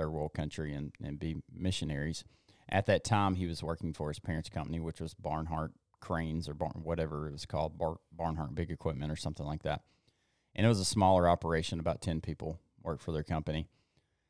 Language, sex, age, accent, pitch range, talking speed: English, male, 30-49, American, 80-95 Hz, 195 wpm